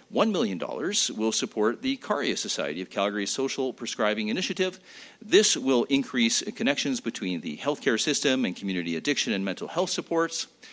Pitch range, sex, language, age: 105-175 Hz, male, English, 40-59